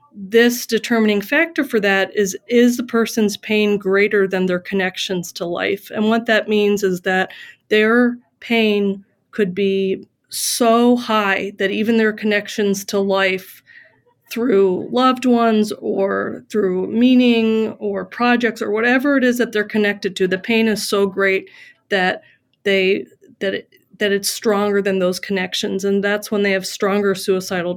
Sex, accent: female, American